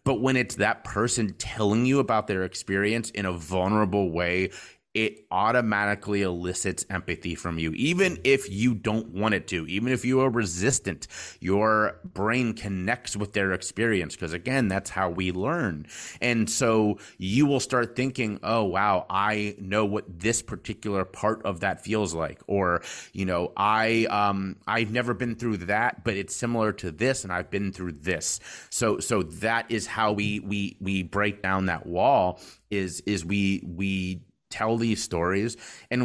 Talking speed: 170 wpm